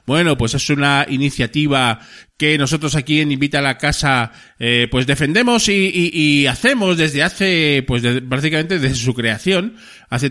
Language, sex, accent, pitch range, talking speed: Spanish, male, Spanish, 120-155 Hz, 170 wpm